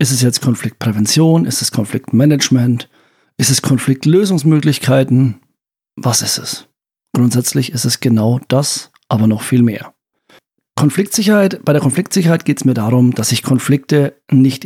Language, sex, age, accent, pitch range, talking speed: German, male, 50-69, German, 130-170 Hz, 140 wpm